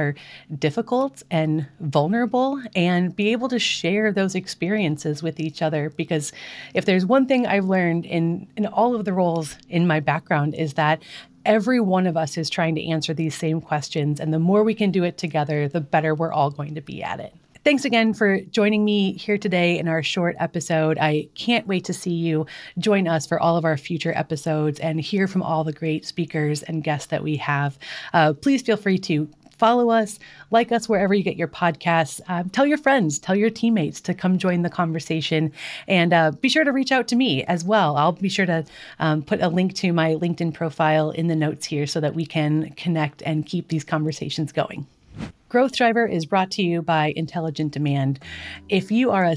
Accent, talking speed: American, 210 wpm